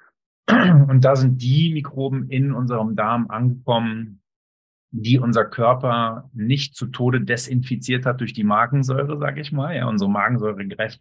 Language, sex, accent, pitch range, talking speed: German, male, German, 110-135 Hz, 140 wpm